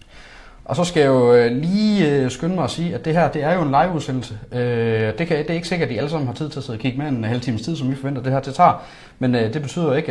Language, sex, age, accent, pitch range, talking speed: Danish, male, 30-49, native, 110-145 Hz, 305 wpm